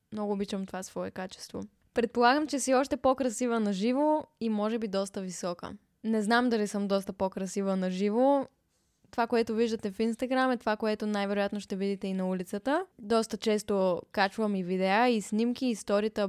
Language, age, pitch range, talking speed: Bulgarian, 10-29, 200-250 Hz, 175 wpm